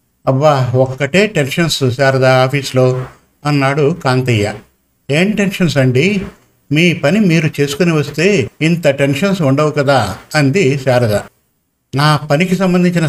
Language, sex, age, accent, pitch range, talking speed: Telugu, male, 50-69, native, 130-160 Hz, 110 wpm